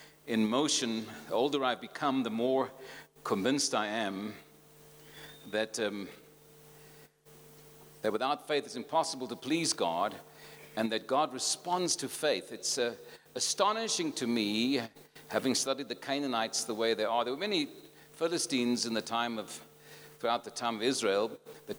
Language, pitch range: English, 115-150 Hz